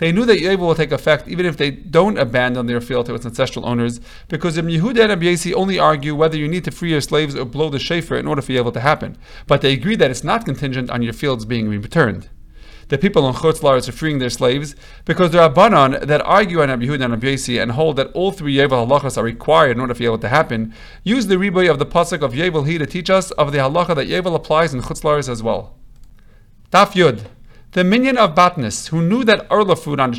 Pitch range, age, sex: 130-175 Hz, 40-59, male